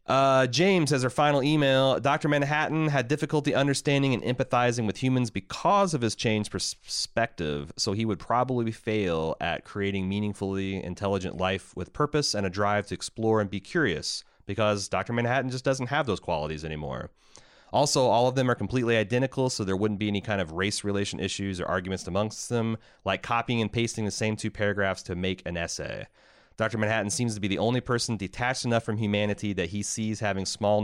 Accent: American